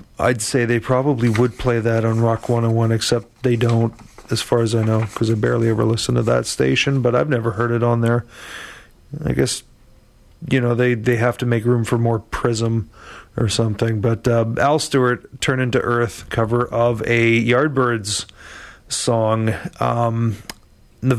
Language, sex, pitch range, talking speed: English, male, 110-125 Hz, 175 wpm